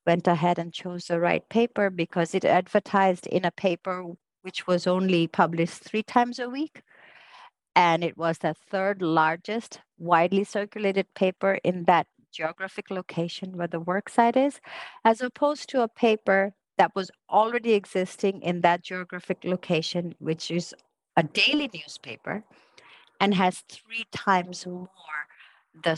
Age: 50-69